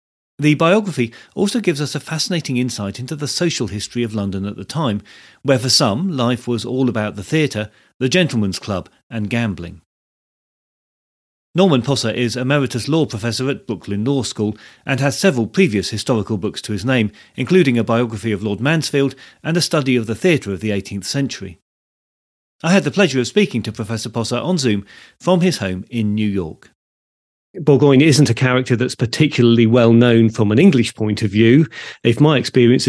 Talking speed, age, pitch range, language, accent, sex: 180 wpm, 40-59, 115-140 Hz, English, British, male